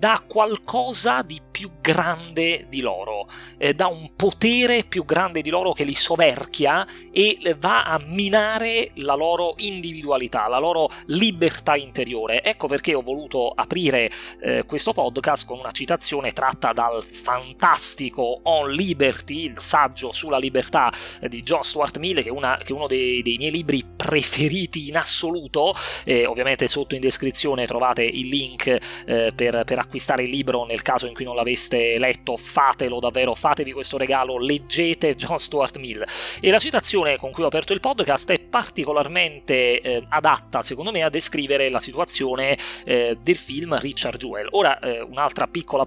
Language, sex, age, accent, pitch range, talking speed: Italian, male, 30-49, native, 125-170 Hz, 160 wpm